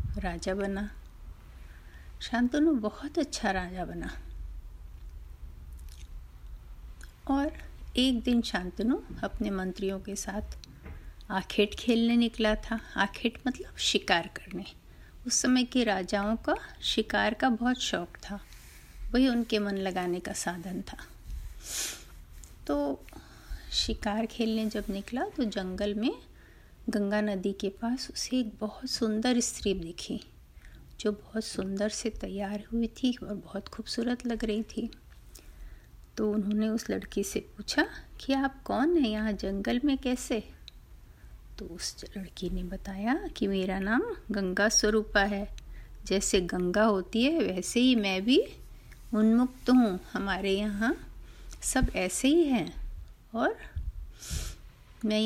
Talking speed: 125 wpm